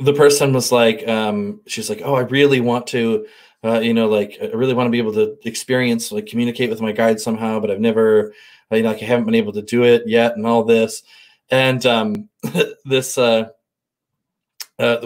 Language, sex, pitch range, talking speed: English, male, 115-180 Hz, 205 wpm